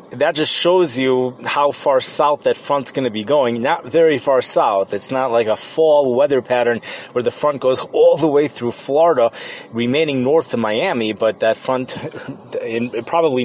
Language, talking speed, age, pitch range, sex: English, 185 wpm, 30-49, 120-155 Hz, male